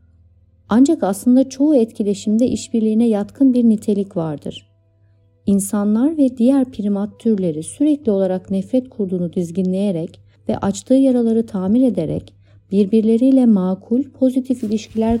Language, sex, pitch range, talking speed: Turkish, female, 170-225 Hz, 110 wpm